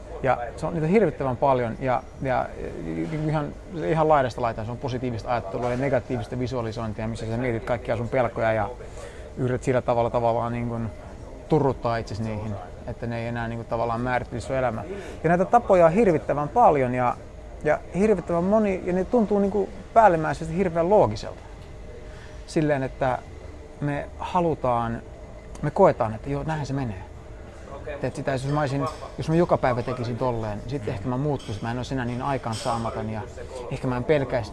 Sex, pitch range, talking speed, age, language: male, 110-145 Hz, 170 wpm, 30-49, Finnish